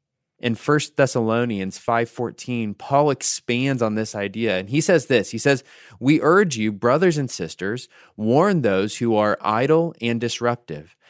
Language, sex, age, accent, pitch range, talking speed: English, male, 20-39, American, 120-180 Hz, 150 wpm